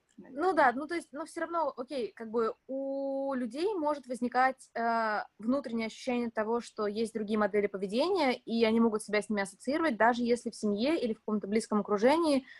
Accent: native